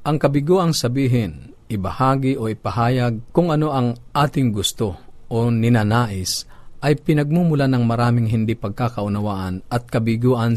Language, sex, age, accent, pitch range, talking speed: Filipino, male, 40-59, native, 110-130 Hz, 120 wpm